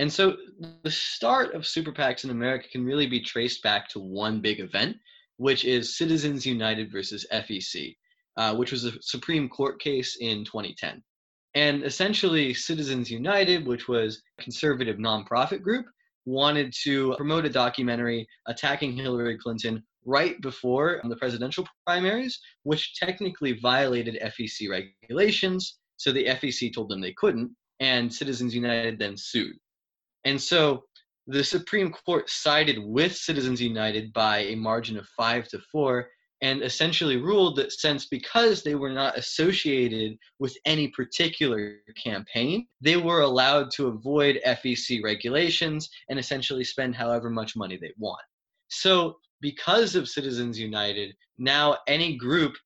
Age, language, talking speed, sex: 20-39, English, 145 wpm, male